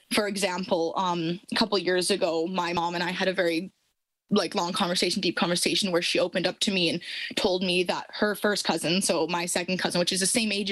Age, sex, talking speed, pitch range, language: 20-39, female, 235 wpm, 175-205 Hz, English